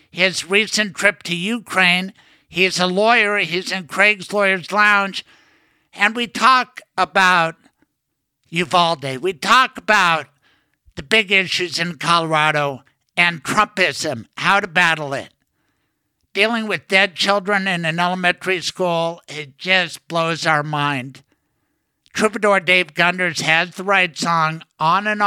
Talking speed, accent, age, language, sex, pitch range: 130 wpm, American, 60-79, English, male, 165-200 Hz